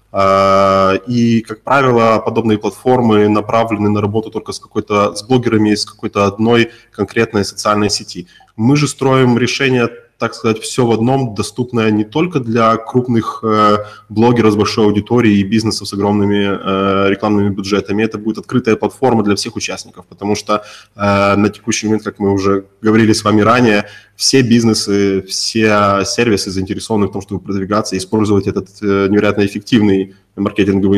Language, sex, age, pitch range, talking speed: Russian, male, 20-39, 100-115 Hz, 155 wpm